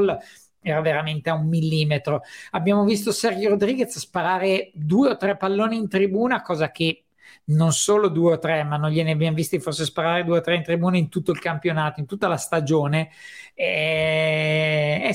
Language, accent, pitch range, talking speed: Italian, native, 165-210 Hz, 180 wpm